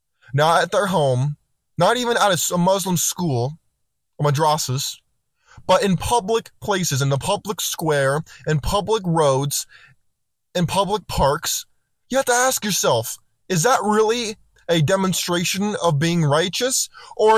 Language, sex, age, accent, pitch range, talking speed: English, male, 20-39, American, 145-195 Hz, 140 wpm